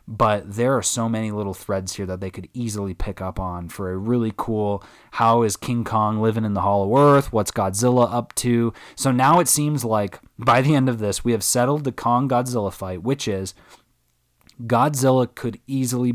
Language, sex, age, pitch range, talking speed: English, male, 20-39, 100-125 Hz, 195 wpm